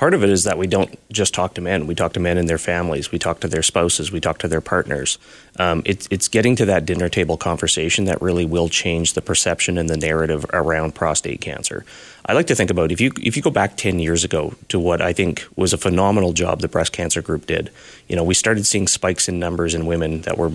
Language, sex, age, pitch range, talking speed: English, male, 30-49, 85-100 Hz, 255 wpm